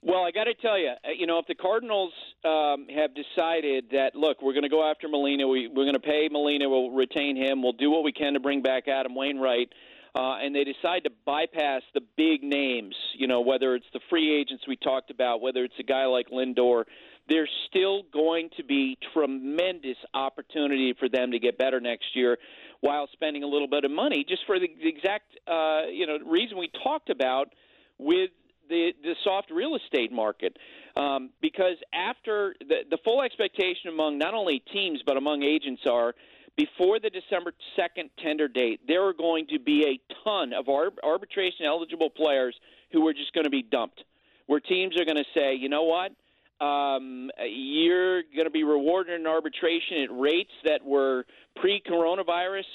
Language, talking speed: English, 190 wpm